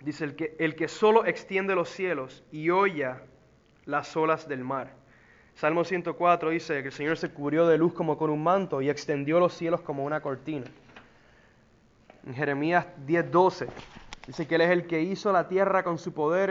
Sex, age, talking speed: male, 20-39, 185 wpm